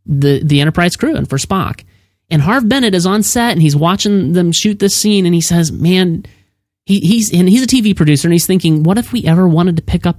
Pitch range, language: 135-180 Hz, English